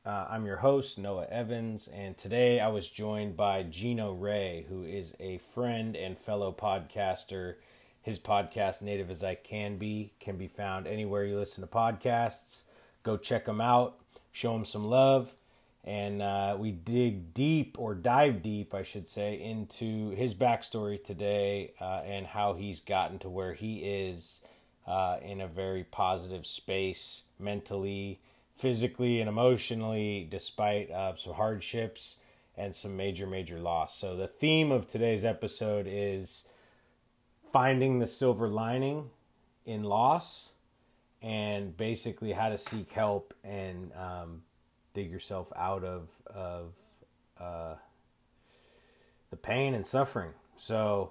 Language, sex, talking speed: English, male, 140 wpm